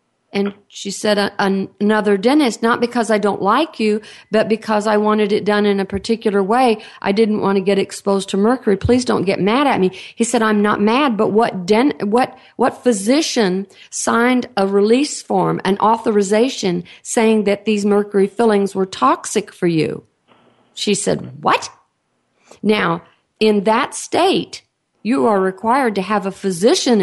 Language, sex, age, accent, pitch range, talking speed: English, female, 50-69, American, 195-235 Hz, 165 wpm